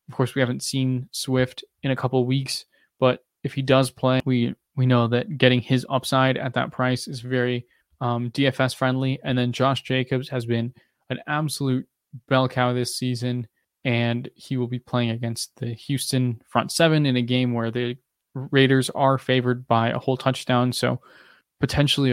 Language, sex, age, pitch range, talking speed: English, male, 20-39, 120-135 Hz, 180 wpm